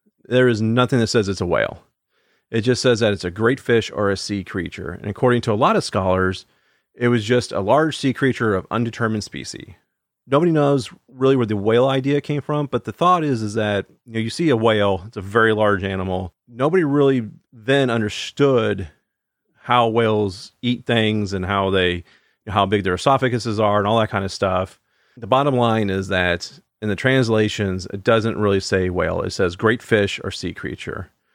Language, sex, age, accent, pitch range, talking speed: English, male, 40-59, American, 100-130 Hz, 205 wpm